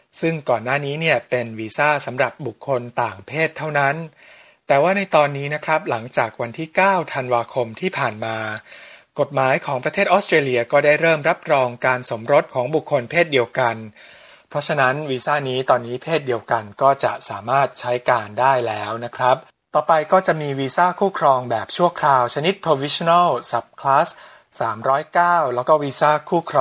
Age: 20-39